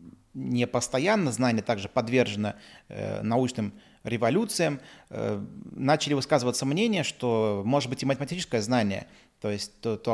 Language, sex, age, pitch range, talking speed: Russian, male, 20-39, 115-145 Hz, 130 wpm